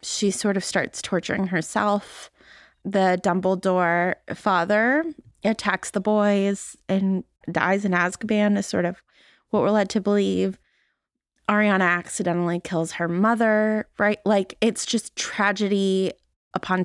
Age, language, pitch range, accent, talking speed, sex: 20-39, English, 190-235 Hz, American, 125 wpm, female